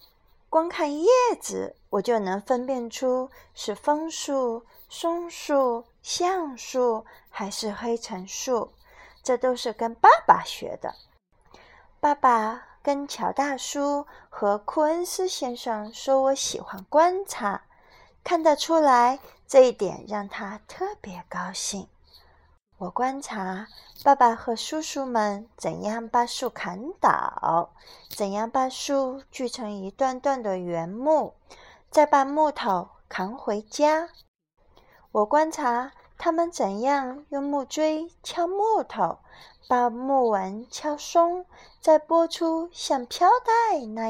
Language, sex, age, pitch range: Chinese, female, 30-49, 225-315 Hz